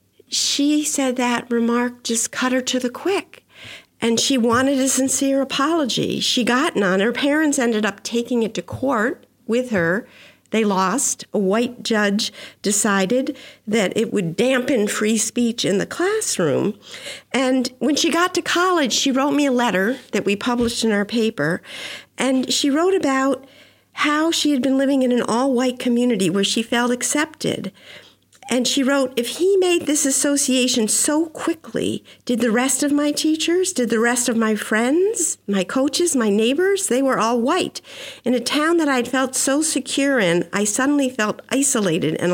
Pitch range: 225-280 Hz